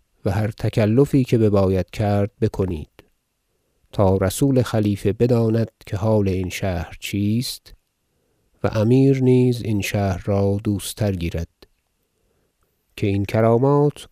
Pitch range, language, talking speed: 100-115 Hz, Persian, 120 wpm